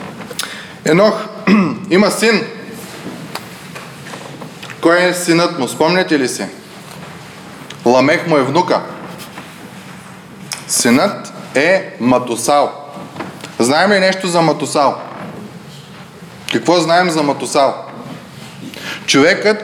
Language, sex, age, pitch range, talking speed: Bulgarian, male, 20-39, 160-205 Hz, 85 wpm